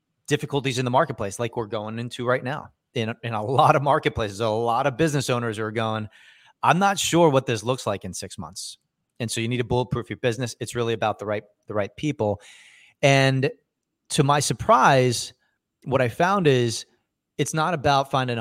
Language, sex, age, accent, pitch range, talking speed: English, male, 30-49, American, 110-135 Hz, 200 wpm